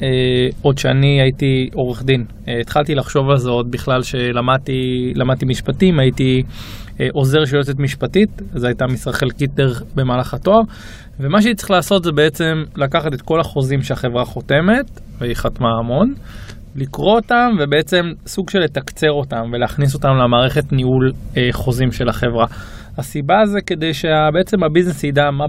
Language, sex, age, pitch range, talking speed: Hebrew, male, 20-39, 125-160 Hz, 150 wpm